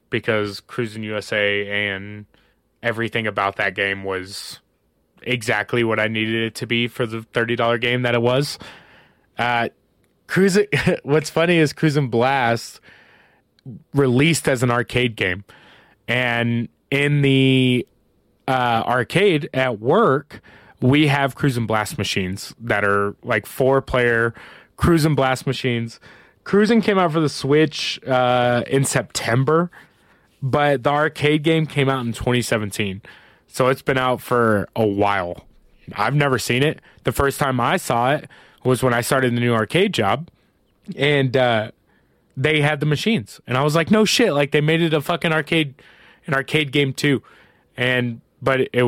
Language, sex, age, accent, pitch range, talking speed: English, male, 20-39, American, 115-145 Hz, 150 wpm